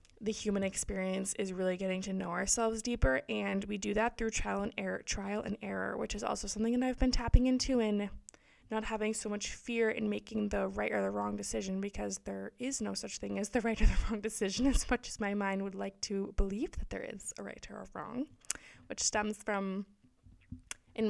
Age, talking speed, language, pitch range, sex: 20-39, 220 wpm, English, 175-225 Hz, female